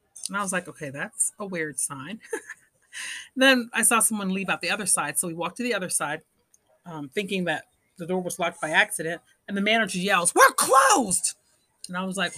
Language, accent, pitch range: English, American, 175-235 Hz